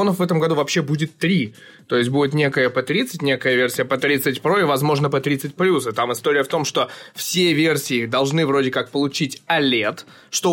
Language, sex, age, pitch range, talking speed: Russian, male, 20-39, 130-160 Hz, 200 wpm